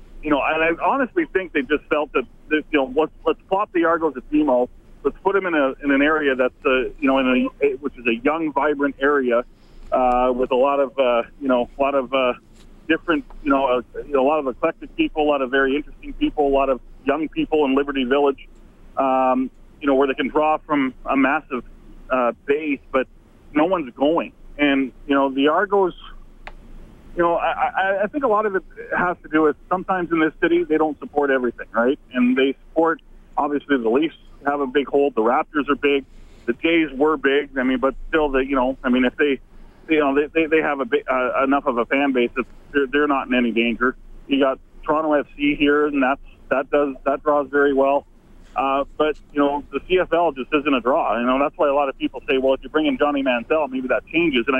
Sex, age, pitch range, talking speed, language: male, 40-59, 135-155 Hz, 230 wpm, English